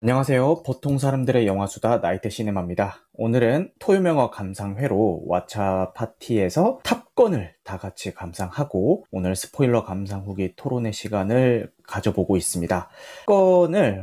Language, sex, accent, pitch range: Korean, male, native, 100-150 Hz